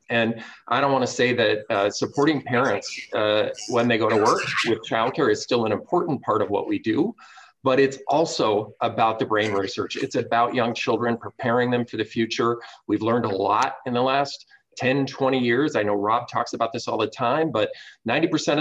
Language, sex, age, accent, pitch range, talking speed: English, male, 40-59, American, 115-145 Hz, 205 wpm